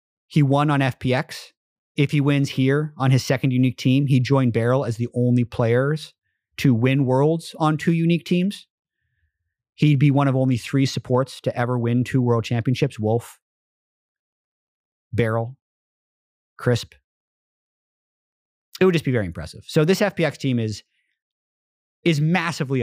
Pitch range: 115-175 Hz